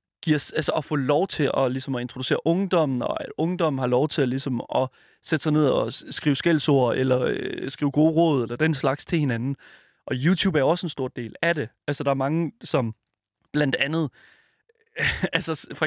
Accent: native